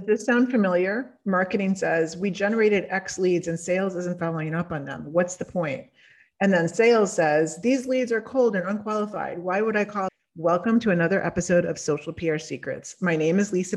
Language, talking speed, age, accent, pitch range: English, 200 wpm, 30-49, American, 160-195 Hz